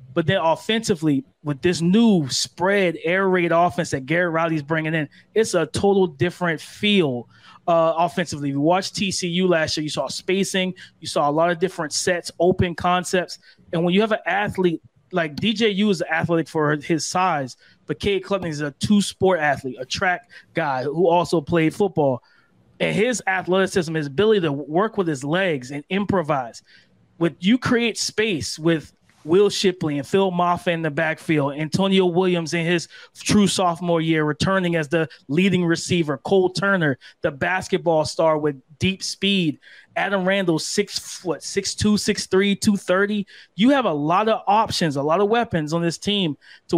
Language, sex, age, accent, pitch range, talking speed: English, male, 20-39, American, 160-195 Hz, 170 wpm